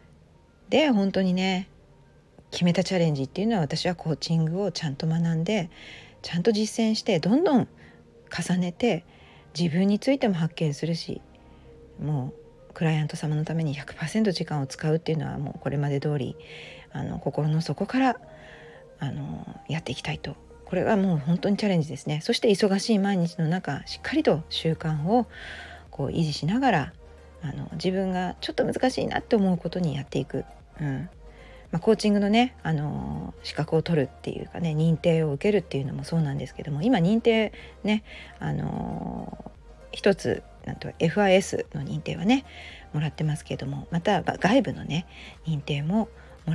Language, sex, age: Japanese, female, 40-59